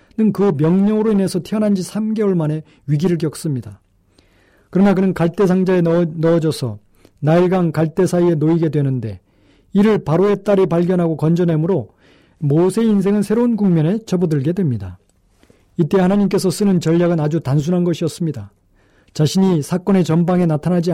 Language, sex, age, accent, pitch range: Korean, male, 40-59, native, 145-190 Hz